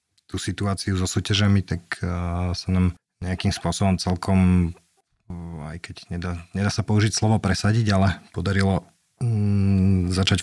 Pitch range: 85-95 Hz